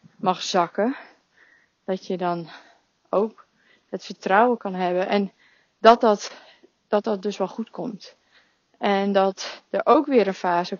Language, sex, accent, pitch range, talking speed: Dutch, female, Dutch, 180-215 Hz, 145 wpm